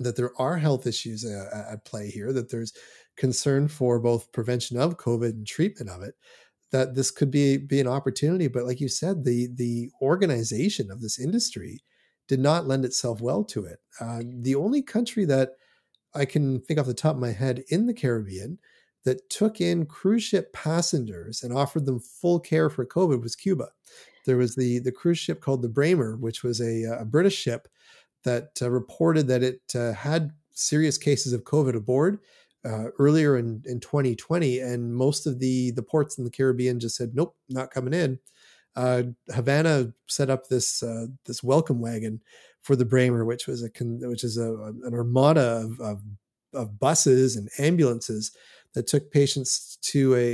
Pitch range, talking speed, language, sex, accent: 120-150 Hz, 185 wpm, English, male, American